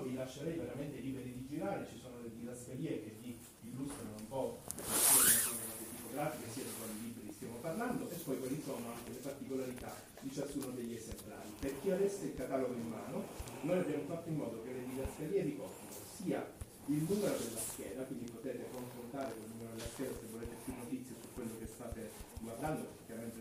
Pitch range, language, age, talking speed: 115-135 Hz, Italian, 30-49, 195 wpm